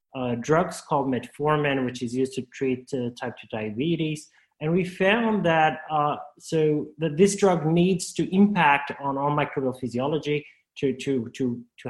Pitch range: 130-160 Hz